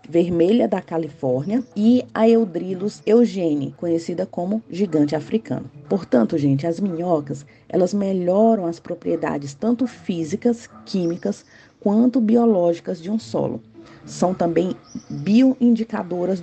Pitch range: 165-225 Hz